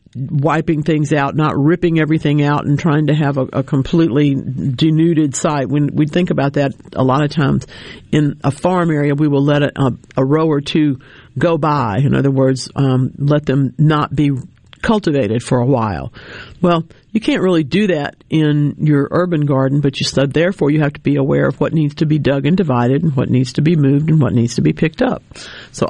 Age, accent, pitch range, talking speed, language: 50-69, American, 135-175 Hz, 215 wpm, English